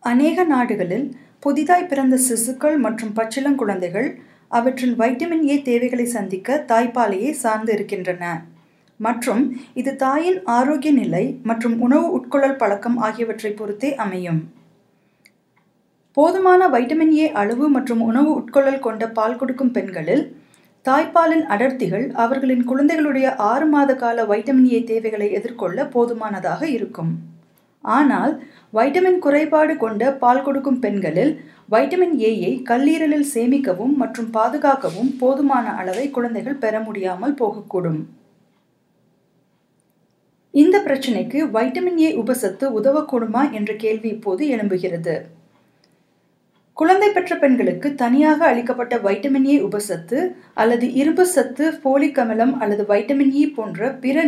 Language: Tamil